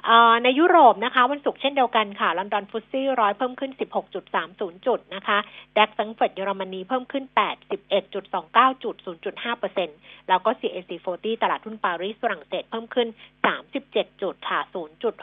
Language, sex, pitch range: Thai, female, 190-245 Hz